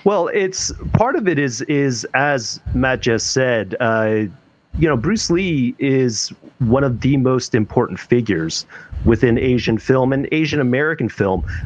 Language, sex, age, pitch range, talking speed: English, male, 40-59, 110-140 Hz, 155 wpm